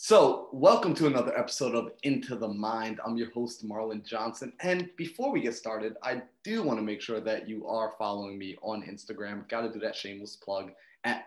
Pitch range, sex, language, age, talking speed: 110-130 Hz, male, English, 30-49, 210 wpm